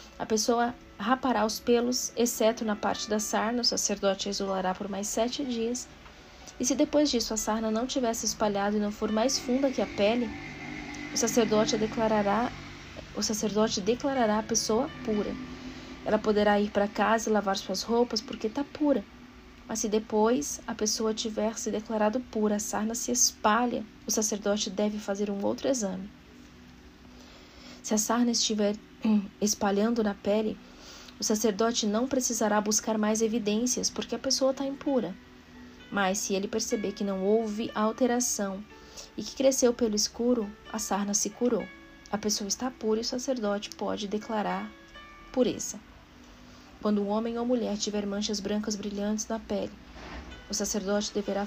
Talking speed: 160 wpm